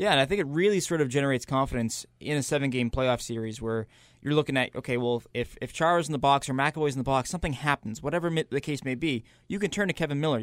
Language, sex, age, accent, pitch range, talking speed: English, male, 20-39, American, 125-150 Hz, 260 wpm